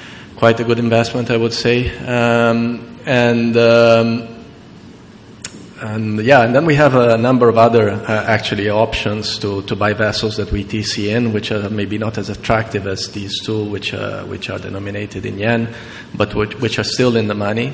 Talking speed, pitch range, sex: 185 wpm, 105-115 Hz, male